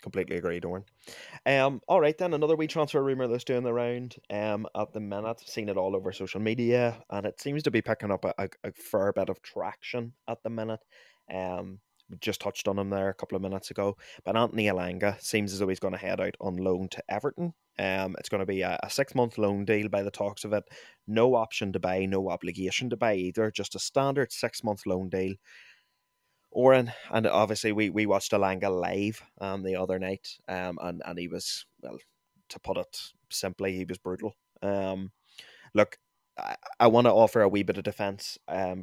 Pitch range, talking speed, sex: 95-115 Hz, 215 wpm, male